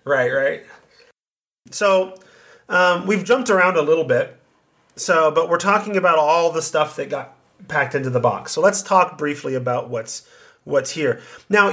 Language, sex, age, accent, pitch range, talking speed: English, male, 30-49, American, 135-195 Hz, 170 wpm